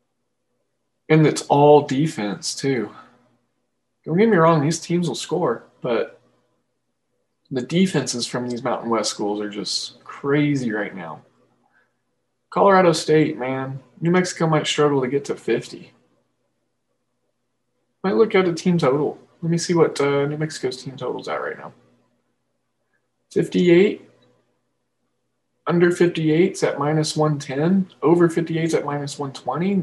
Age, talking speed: 20-39, 135 wpm